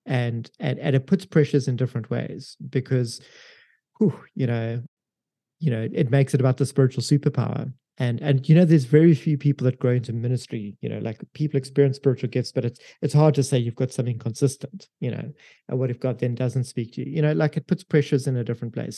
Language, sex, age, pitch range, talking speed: English, male, 30-49, 125-150 Hz, 225 wpm